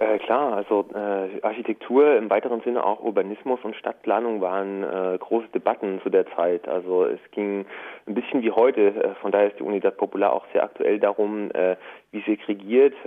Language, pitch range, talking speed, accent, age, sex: German, 100-125 Hz, 185 wpm, German, 30-49, male